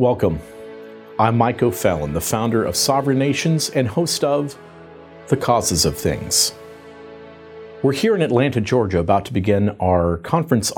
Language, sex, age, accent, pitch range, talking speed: English, male, 40-59, American, 95-135 Hz, 145 wpm